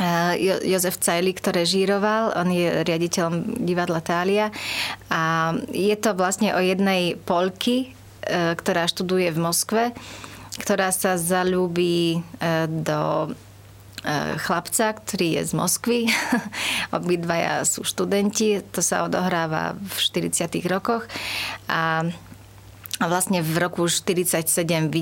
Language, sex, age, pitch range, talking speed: Slovak, female, 30-49, 165-185 Hz, 105 wpm